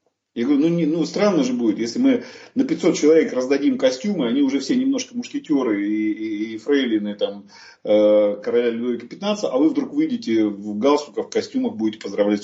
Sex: male